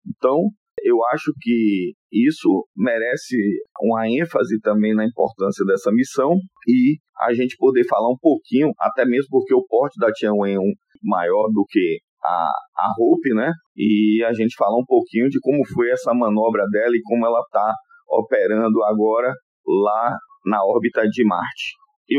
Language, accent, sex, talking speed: Portuguese, Brazilian, male, 155 wpm